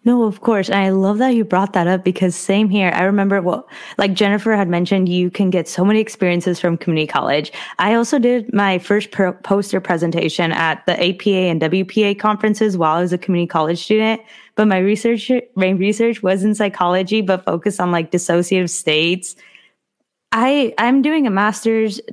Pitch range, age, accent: 180-220 Hz, 20-39, American